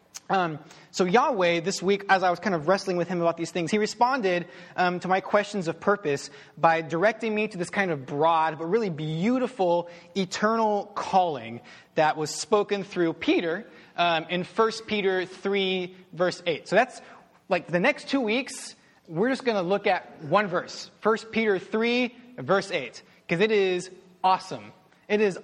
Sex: male